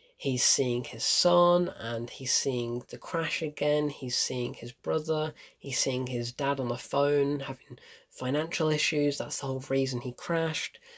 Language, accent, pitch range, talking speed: English, British, 140-200 Hz, 165 wpm